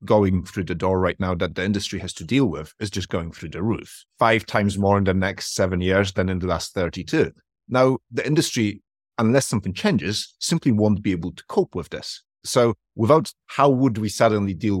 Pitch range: 90-115 Hz